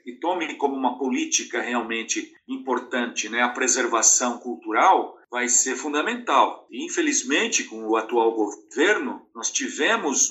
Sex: male